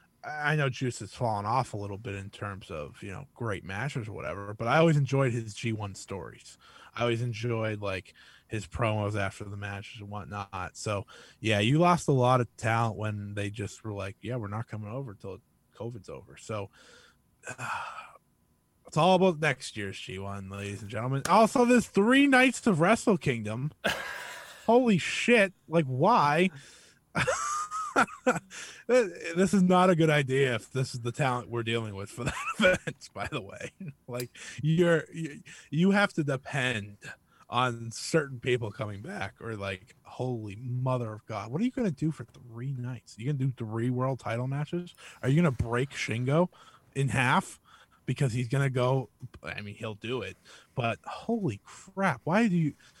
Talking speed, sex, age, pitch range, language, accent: 175 wpm, male, 20-39, 110-160 Hz, English, American